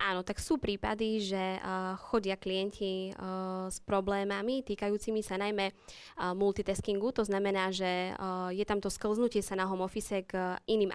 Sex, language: female, Slovak